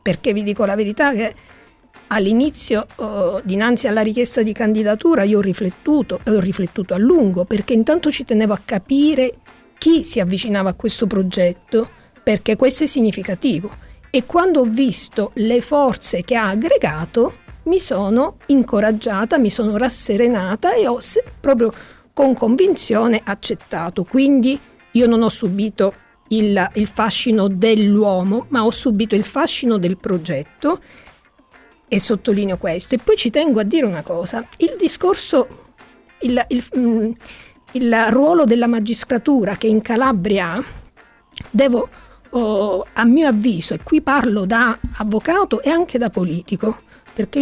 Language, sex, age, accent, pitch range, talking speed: Italian, female, 40-59, native, 205-260 Hz, 140 wpm